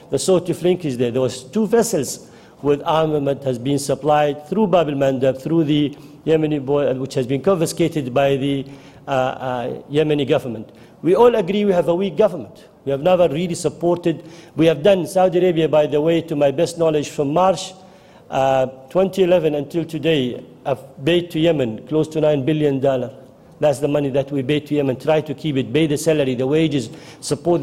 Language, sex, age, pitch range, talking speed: English, male, 50-69, 135-165 Hz, 190 wpm